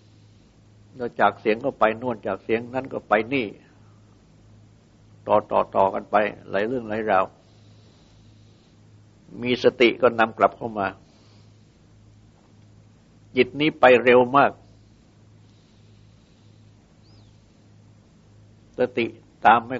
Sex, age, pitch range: male, 60-79, 105-110 Hz